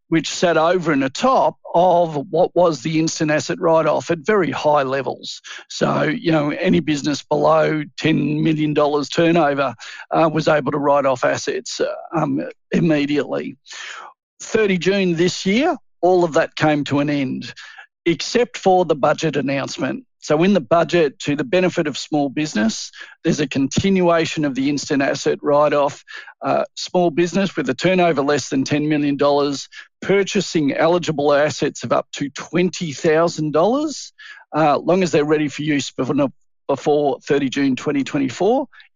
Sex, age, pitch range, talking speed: male, 50-69, 150-180 Hz, 150 wpm